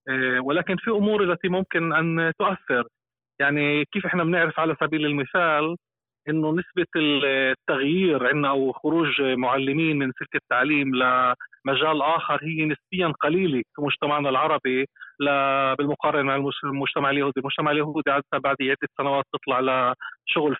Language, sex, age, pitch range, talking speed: Arabic, male, 30-49, 135-165 Hz, 125 wpm